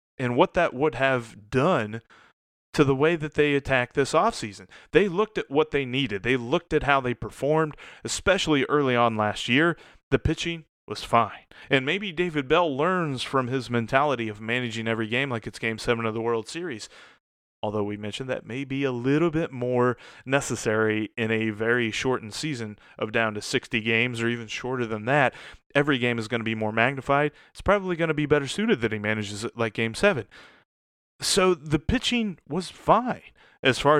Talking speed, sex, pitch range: 195 wpm, male, 115-145 Hz